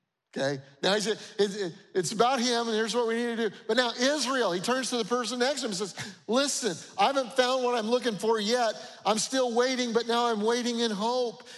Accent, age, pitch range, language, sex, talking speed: American, 50-69, 165-230 Hz, English, male, 230 wpm